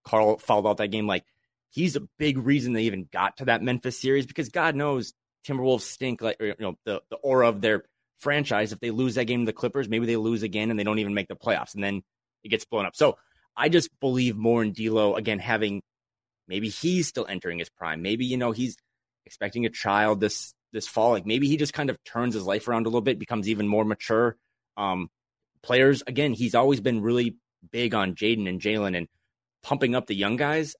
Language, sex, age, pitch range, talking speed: English, male, 30-49, 105-125 Hz, 230 wpm